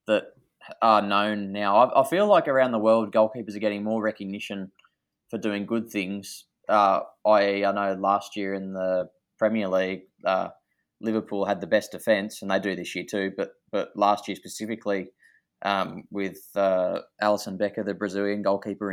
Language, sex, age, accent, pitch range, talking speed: English, male, 20-39, Australian, 100-115 Hz, 175 wpm